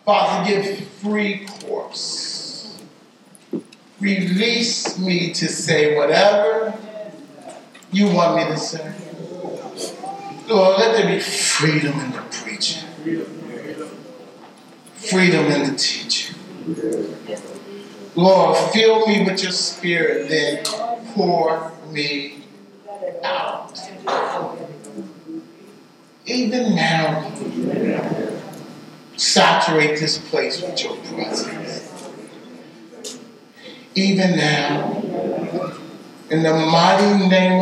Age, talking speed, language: 60-79, 80 wpm, English